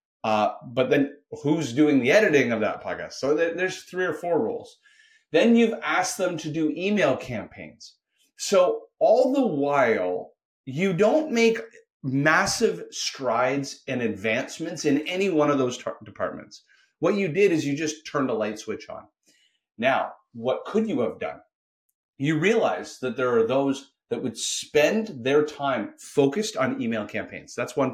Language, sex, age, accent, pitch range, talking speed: English, male, 30-49, American, 135-210 Hz, 160 wpm